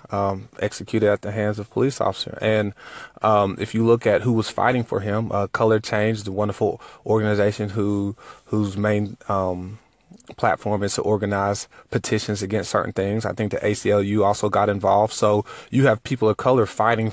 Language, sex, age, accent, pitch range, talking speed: English, male, 20-39, American, 105-115 Hz, 180 wpm